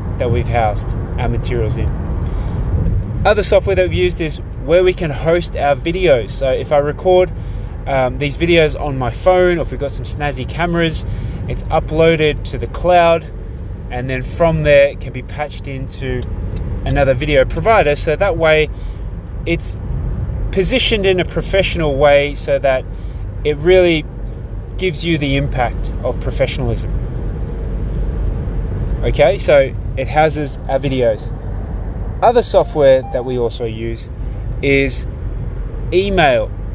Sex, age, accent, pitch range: male, 20-39, Australian, 105-155 Hz